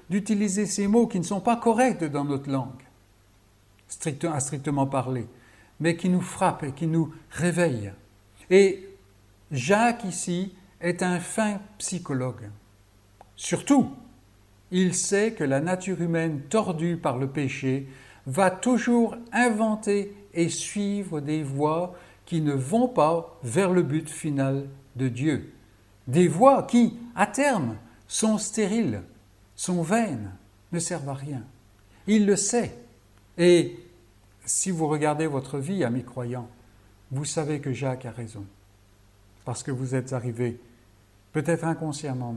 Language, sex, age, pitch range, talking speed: French, male, 60-79, 115-185 Hz, 130 wpm